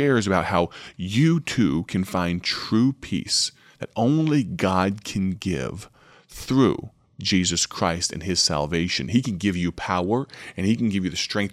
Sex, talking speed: male, 160 wpm